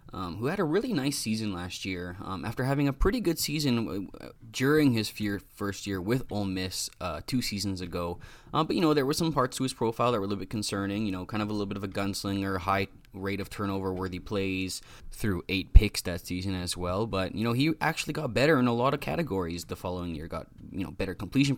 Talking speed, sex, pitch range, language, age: 240 wpm, male, 95-125 Hz, English, 20-39